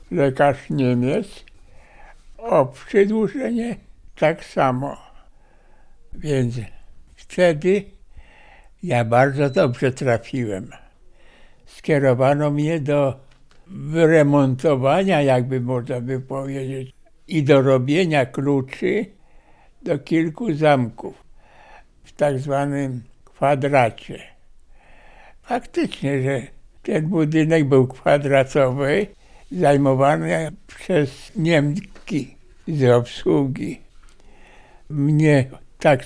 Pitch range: 130-155 Hz